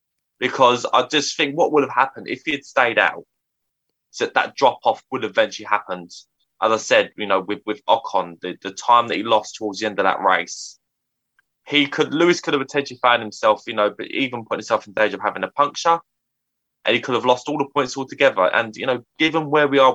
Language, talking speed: English, 225 wpm